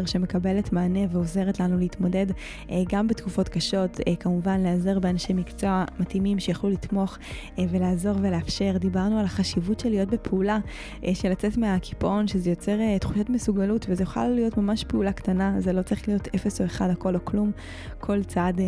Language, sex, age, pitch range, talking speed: Hebrew, female, 20-39, 180-200 Hz, 155 wpm